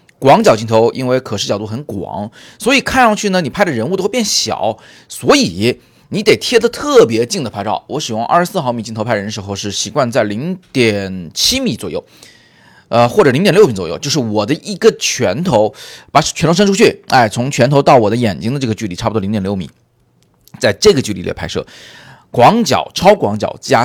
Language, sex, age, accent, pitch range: Chinese, male, 30-49, native, 110-155 Hz